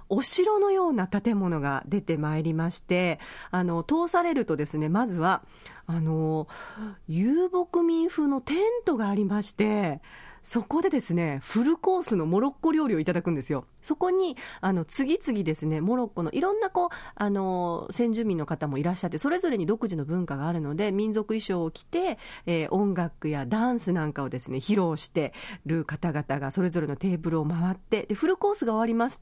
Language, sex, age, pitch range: Japanese, female, 40-59, 170-260 Hz